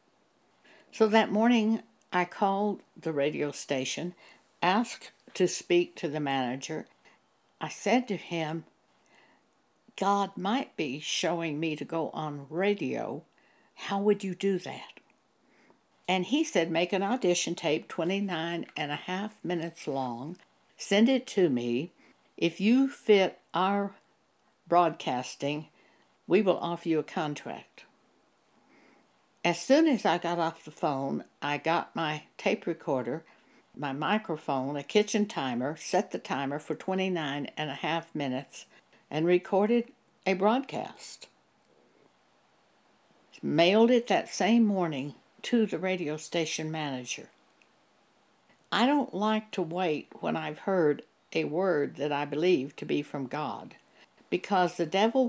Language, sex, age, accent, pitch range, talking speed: English, female, 60-79, American, 155-205 Hz, 130 wpm